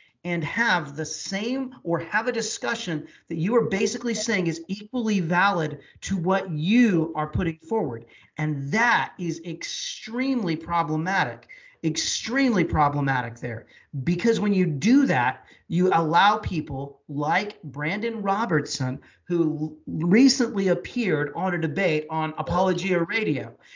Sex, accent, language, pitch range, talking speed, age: male, American, English, 155-215 Hz, 125 wpm, 40-59